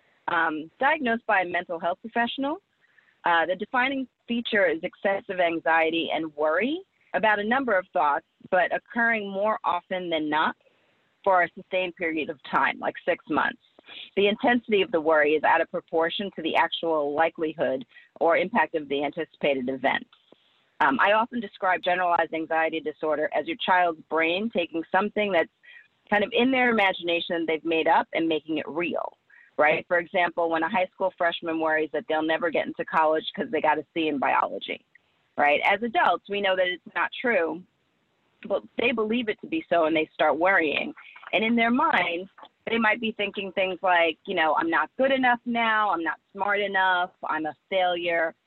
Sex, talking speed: female, 180 wpm